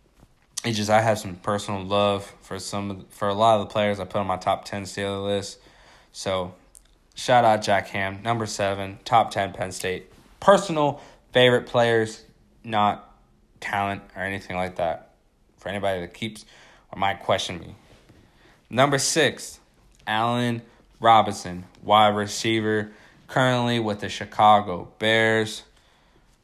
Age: 20-39